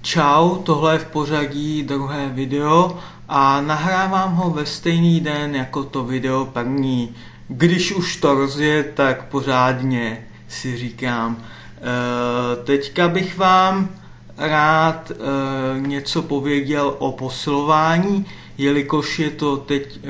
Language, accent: Czech, native